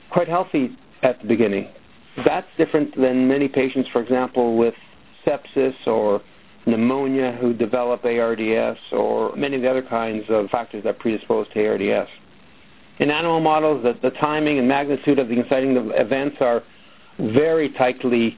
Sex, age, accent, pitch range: male, 50-69, American, 120-145 Hz